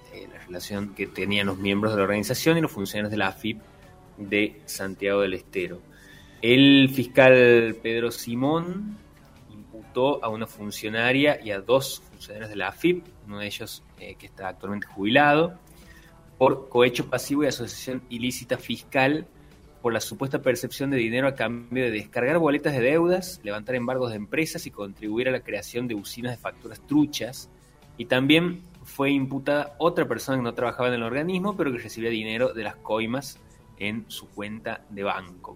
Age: 20-39